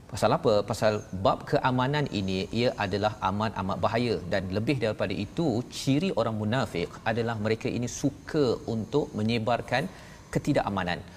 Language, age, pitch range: Malayalam, 40-59, 105-130 Hz